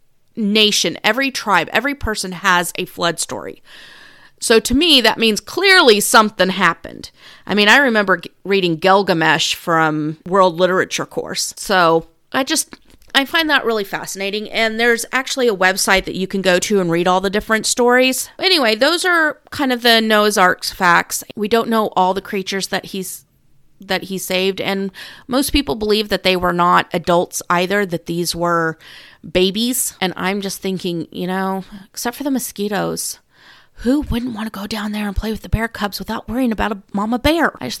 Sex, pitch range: female, 185-235 Hz